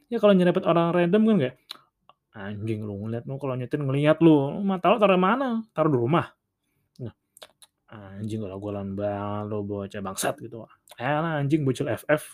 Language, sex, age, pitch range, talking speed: Indonesian, male, 20-39, 115-150 Hz, 165 wpm